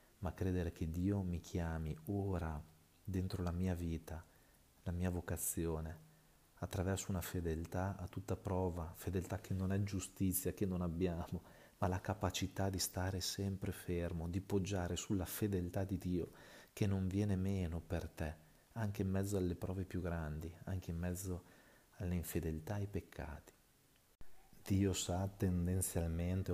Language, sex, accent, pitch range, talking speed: Italian, male, native, 85-100 Hz, 145 wpm